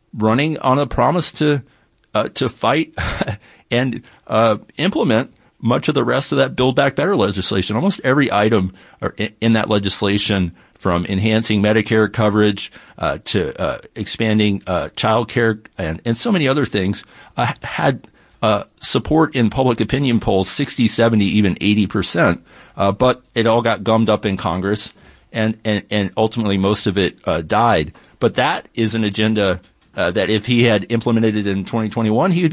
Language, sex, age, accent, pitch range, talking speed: English, male, 50-69, American, 100-120 Hz, 165 wpm